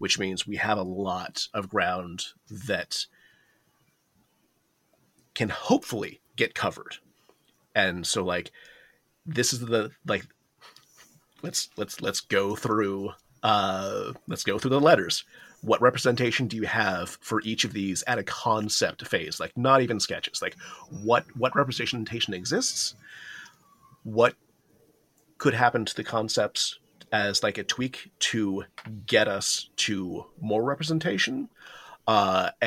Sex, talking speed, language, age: male, 130 wpm, English, 30-49